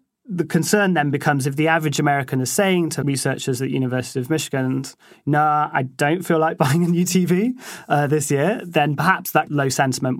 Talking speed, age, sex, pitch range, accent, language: 205 wpm, 30-49, male, 130-165 Hz, British, English